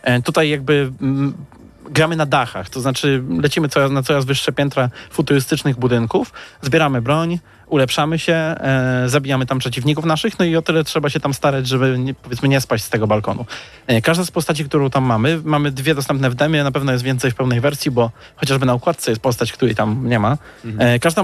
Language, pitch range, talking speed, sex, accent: Polish, 120-155 Hz, 185 wpm, male, native